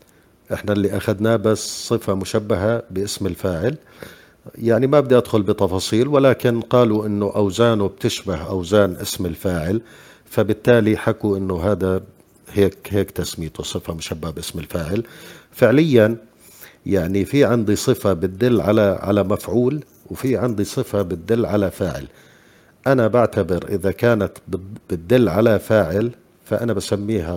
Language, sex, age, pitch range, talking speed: Arabic, male, 50-69, 95-120 Hz, 125 wpm